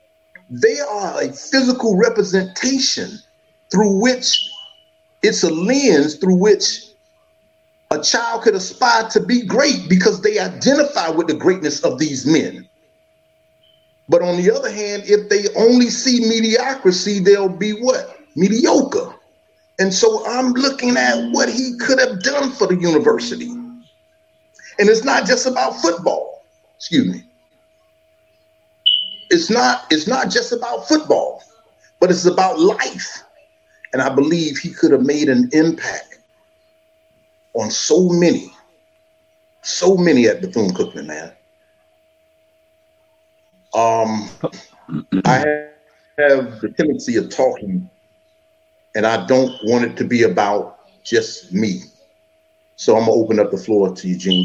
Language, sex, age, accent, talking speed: English, male, 50-69, American, 130 wpm